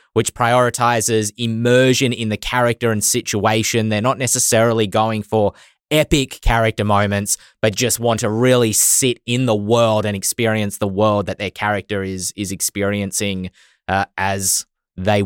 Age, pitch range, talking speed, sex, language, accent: 20-39, 100-120 Hz, 150 wpm, male, English, Australian